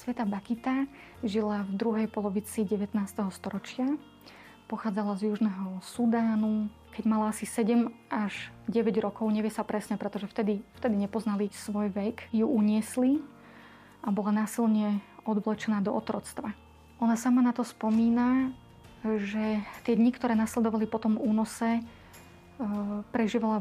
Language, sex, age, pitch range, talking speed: Slovak, female, 20-39, 210-230 Hz, 125 wpm